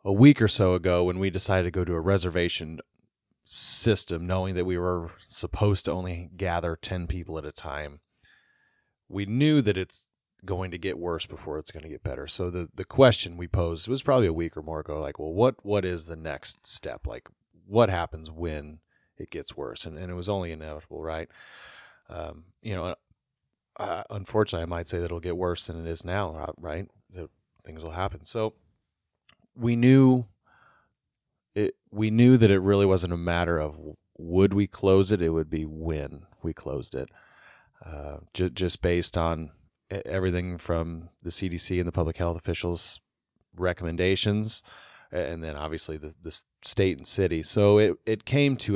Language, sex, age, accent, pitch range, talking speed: English, male, 30-49, American, 85-100 Hz, 185 wpm